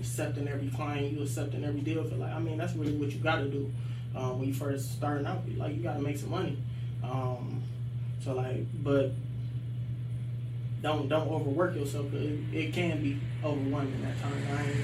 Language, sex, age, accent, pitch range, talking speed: English, male, 20-39, American, 120-140 Hz, 200 wpm